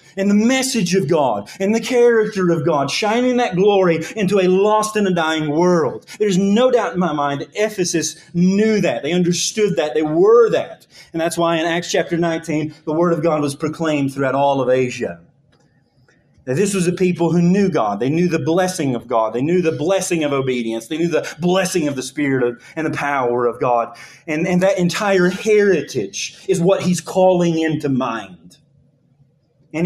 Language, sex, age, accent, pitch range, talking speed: English, male, 30-49, American, 145-195 Hz, 195 wpm